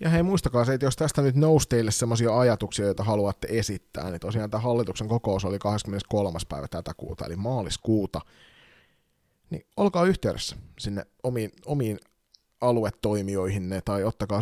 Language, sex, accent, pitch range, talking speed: Finnish, male, native, 100-125 Hz, 145 wpm